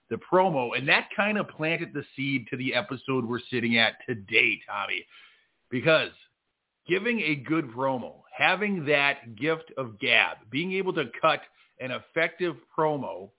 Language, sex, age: English, male, 40-59